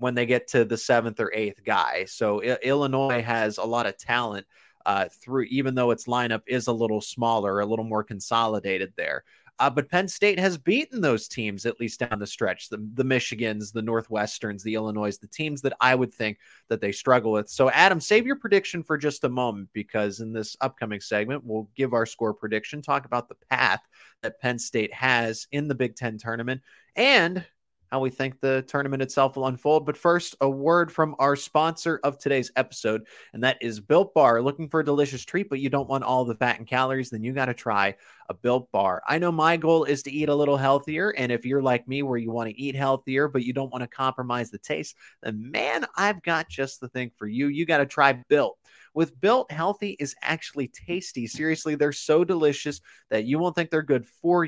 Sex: male